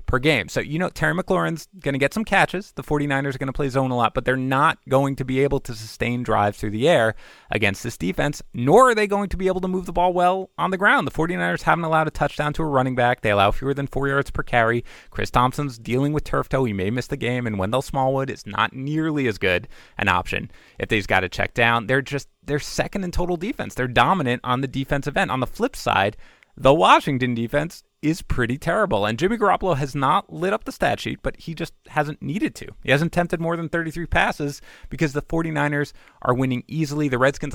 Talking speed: 240 wpm